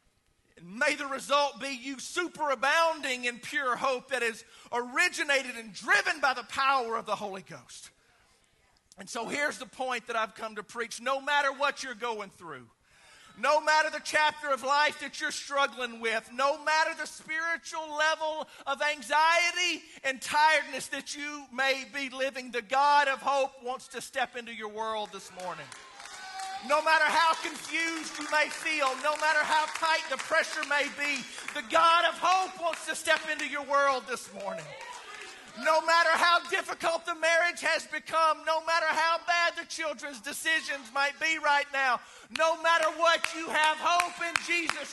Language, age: English, 40-59